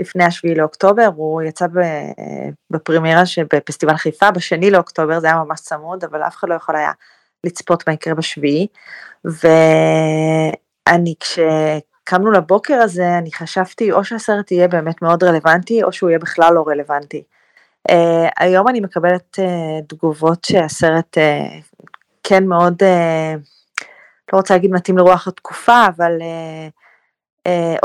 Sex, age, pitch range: female, 20-39, 160-190 Hz